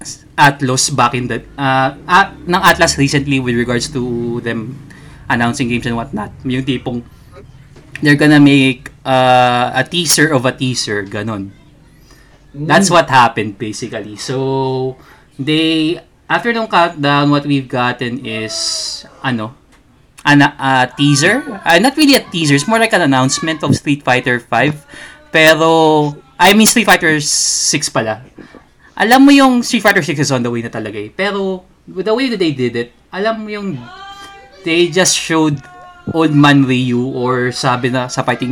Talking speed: 155 wpm